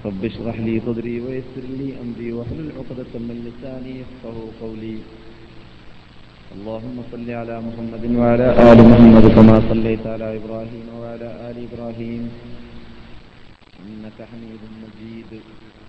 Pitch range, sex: 110-125 Hz, male